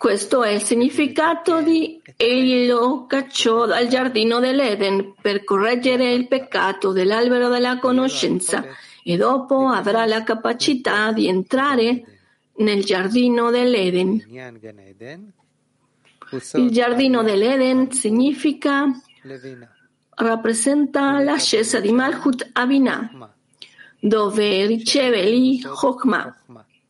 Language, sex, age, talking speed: Italian, female, 40-59, 90 wpm